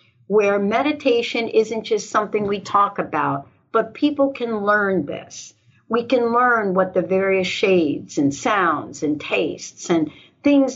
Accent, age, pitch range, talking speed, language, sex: American, 60-79, 180-240 Hz, 145 wpm, English, female